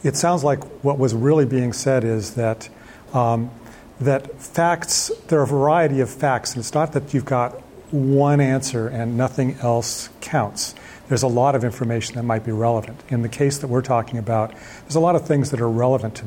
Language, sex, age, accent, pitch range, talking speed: English, male, 40-59, American, 115-145 Hz, 205 wpm